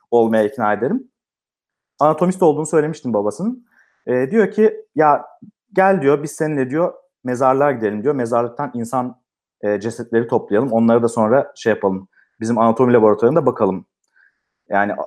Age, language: 40-59, Turkish